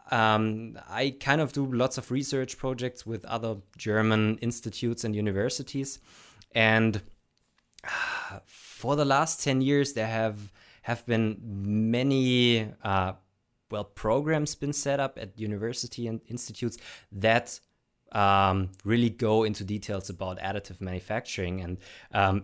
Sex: male